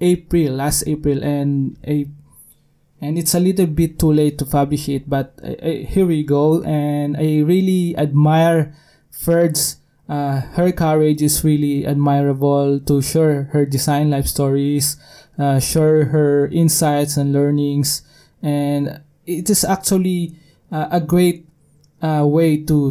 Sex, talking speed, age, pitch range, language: male, 140 wpm, 20-39, 145-160 Hz, English